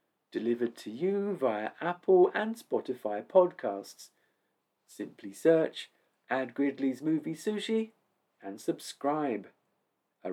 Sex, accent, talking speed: male, British, 100 wpm